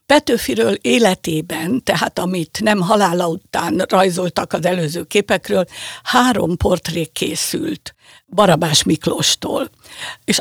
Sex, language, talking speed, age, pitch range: female, Hungarian, 100 wpm, 60-79, 180-225 Hz